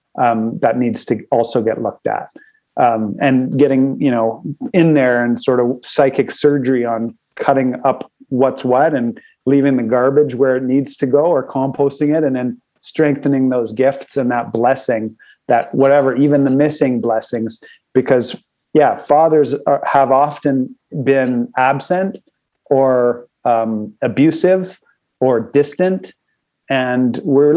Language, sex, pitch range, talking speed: English, male, 125-140 Hz, 140 wpm